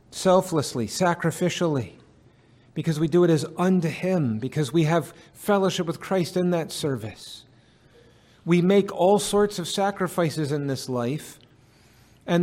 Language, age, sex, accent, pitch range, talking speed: English, 50-69, male, American, 135-185 Hz, 135 wpm